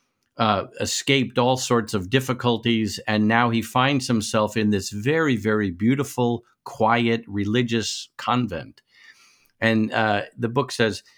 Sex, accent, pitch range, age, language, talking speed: male, American, 110-140 Hz, 50-69, English, 130 wpm